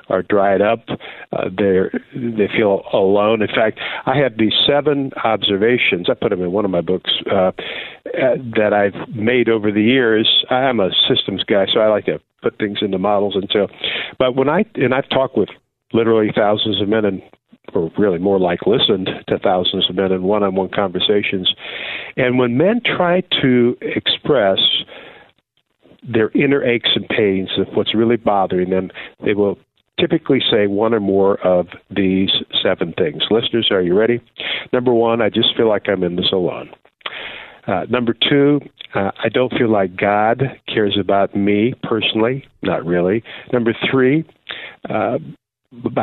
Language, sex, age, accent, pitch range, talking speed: English, male, 50-69, American, 100-125 Hz, 165 wpm